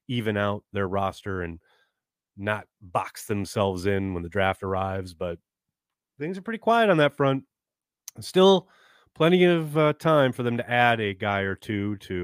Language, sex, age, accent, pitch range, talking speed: English, male, 30-49, American, 95-120 Hz, 170 wpm